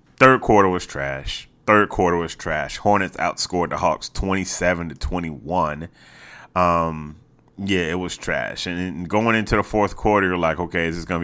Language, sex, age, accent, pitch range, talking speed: English, male, 30-49, American, 90-130 Hz, 170 wpm